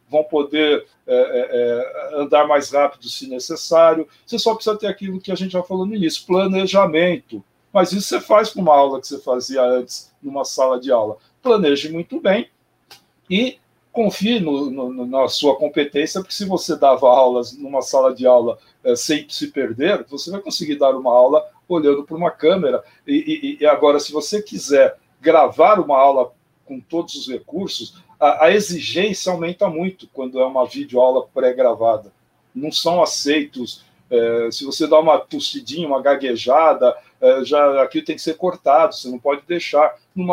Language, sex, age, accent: Portuguese, male, 60-79, Brazilian